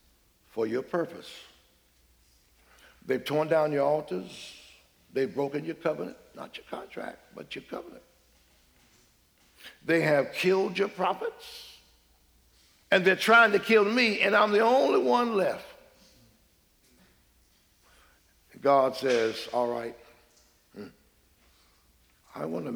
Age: 60-79